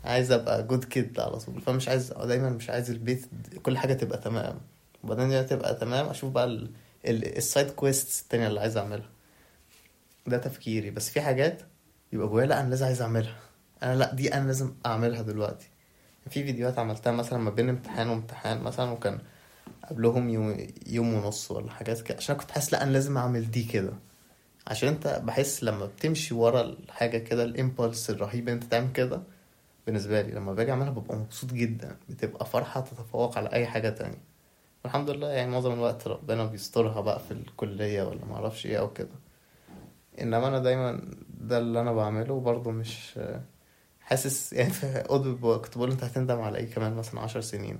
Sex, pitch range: male, 115-130 Hz